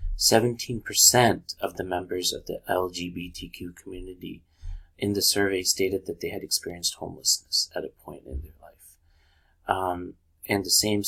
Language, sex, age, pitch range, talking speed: English, male, 30-49, 80-95 Hz, 140 wpm